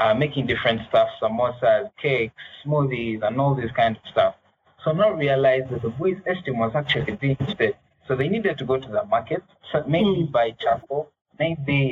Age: 20-39